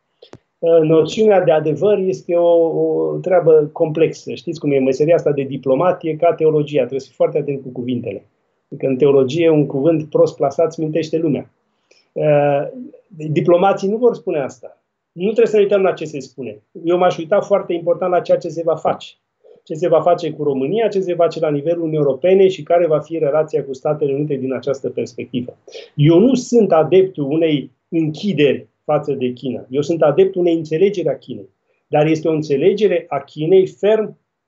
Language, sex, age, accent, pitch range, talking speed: Romanian, male, 30-49, native, 145-185 Hz, 185 wpm